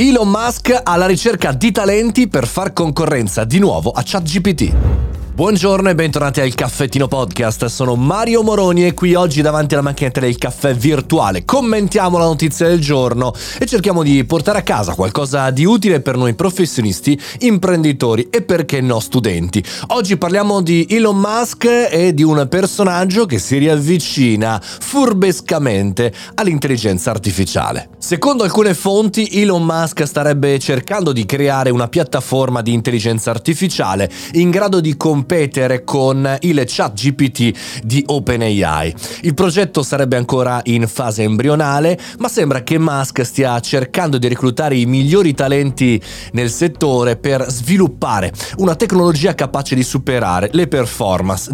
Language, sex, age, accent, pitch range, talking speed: Italian, male, 30-49, native, 125-180 Hz, 140 wpm